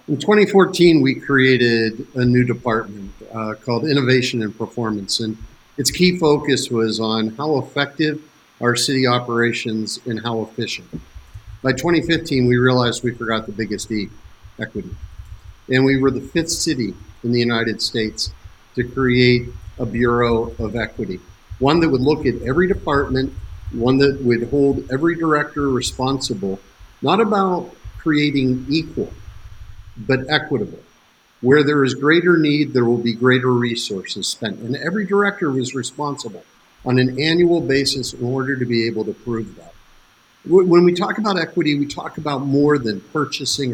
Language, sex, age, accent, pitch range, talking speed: English, male, 50-69, American, 115-150 Hz, 150 wpm